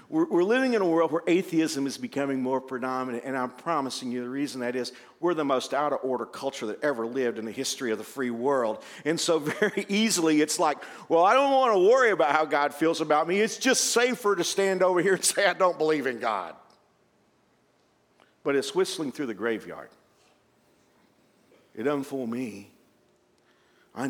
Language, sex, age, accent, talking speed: English, male, 50-69, American, 190 wpm